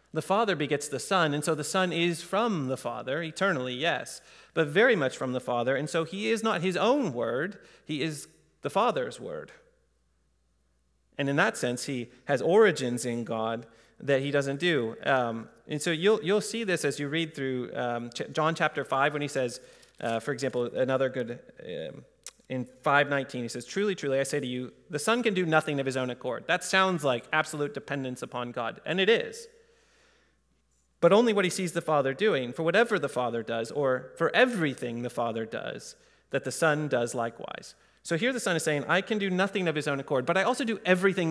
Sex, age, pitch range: male, 30-49, 125-185 Hz